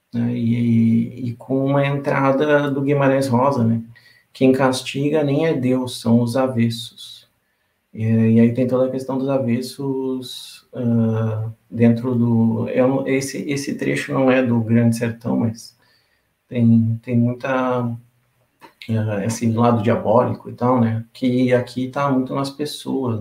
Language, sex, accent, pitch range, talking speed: Portuguese, male, Brazilian, 120-135 Hz, 140 wpm